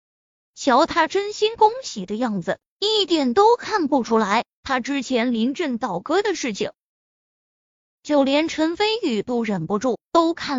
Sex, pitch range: female, 240-365 Hz